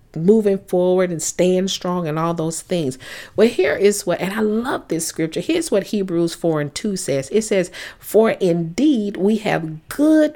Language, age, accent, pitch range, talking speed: English, 50-69, American, 165-210 Hz, 185 wpm